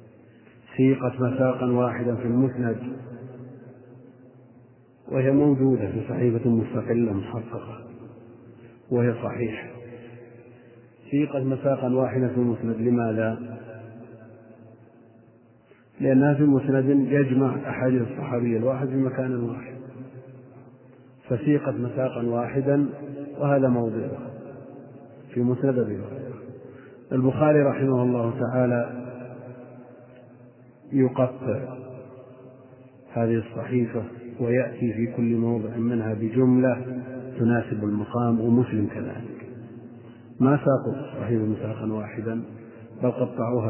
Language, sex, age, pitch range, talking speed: Arabic, male, 40-59, 115-130 Hz, 80 wpm